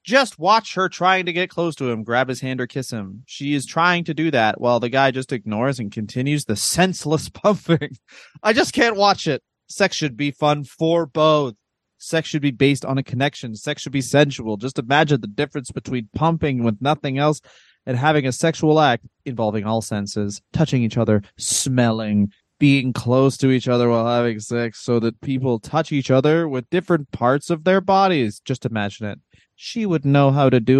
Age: 20-39